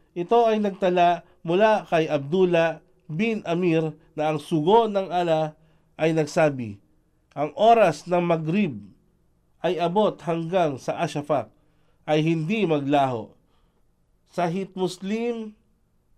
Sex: male